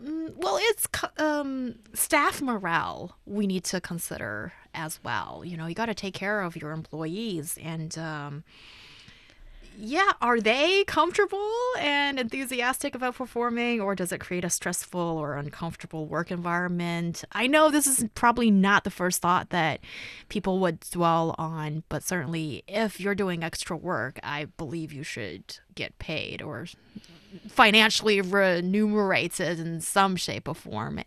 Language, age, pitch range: English, 20-39, 170-230 Hz